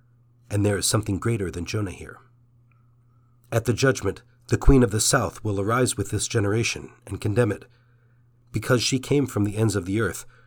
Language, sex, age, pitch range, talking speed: English, male, 50-69, 105-120 Hz, 190 wpm